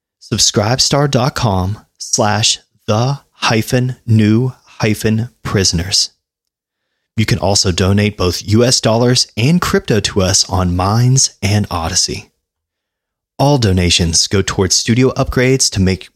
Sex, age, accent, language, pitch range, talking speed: male, 30-49, American, English, 90-130 Hz, 110 wpm